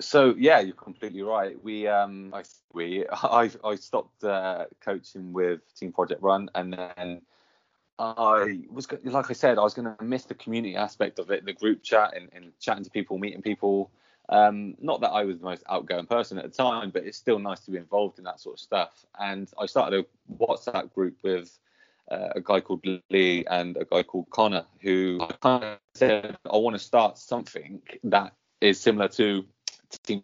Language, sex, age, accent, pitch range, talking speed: English, male, 20-39, British, 90-115 Hz, 195 wpm